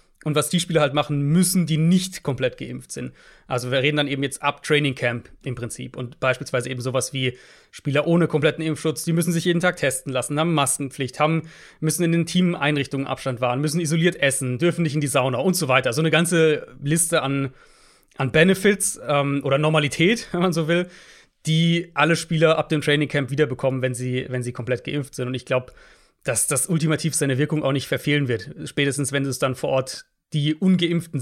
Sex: male